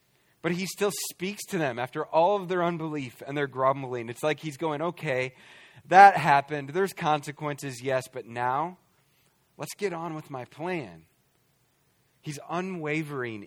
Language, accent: English, American